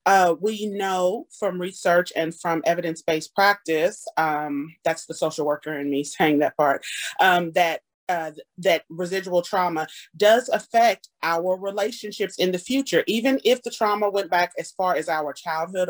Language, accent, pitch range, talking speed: English, American, 165-210 Hz, 155 wpm